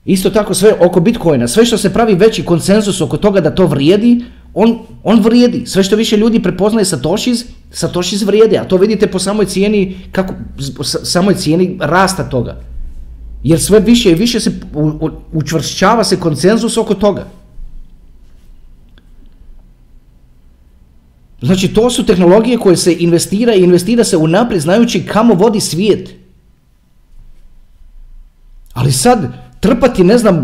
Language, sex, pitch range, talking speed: Croatian, male, 135-225 Hz, 145 wpm